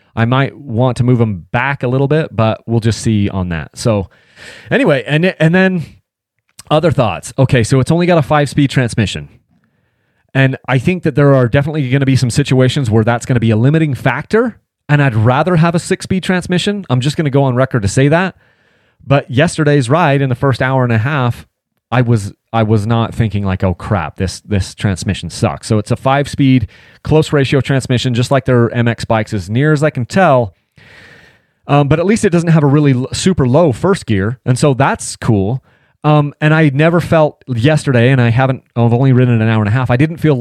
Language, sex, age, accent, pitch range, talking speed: English, male, 30-49, American, 115-145 Hz, 220 wpm